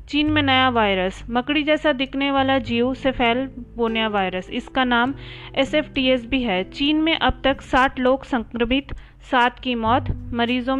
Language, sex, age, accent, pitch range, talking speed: Hindi, female, 30-49, native, 235-285 Hz, 150 wpm